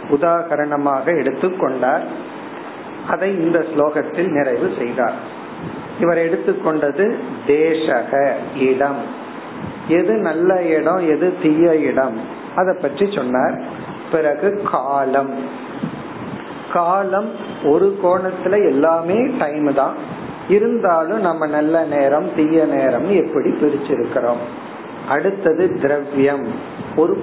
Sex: male